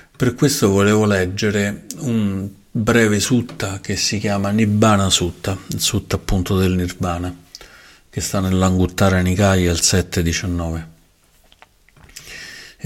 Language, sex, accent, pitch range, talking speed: Italian, male, native, 90-115 Hz, 105 wpm